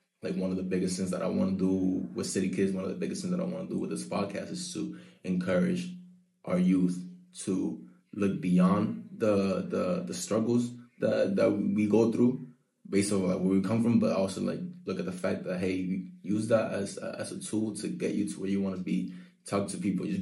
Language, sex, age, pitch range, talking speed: English, male, 20-39, 95-130 Hz, 230 wpm